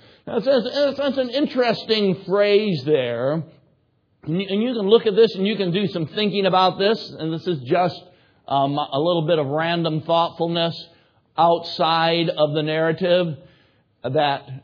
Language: English